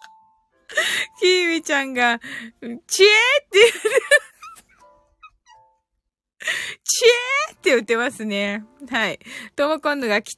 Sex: female